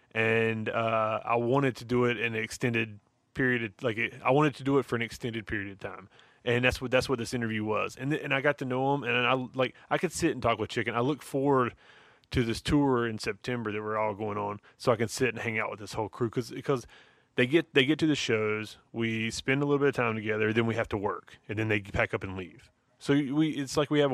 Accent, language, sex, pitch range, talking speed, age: American, English, male, 110-130 Hz, 275 wpm, 30-49